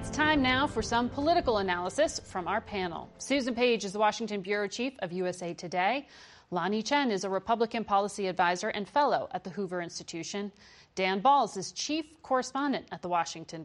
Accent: American